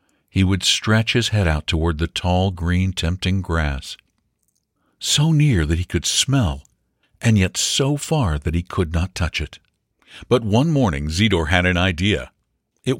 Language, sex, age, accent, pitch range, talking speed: English, male, 60-79, American, 80-110 Hz, 165 wpm